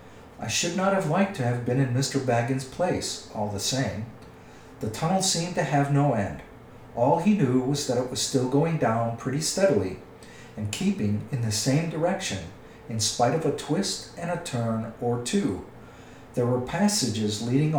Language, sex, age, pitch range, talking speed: English, male, 50-69, 115-150 Hz, 180 wpm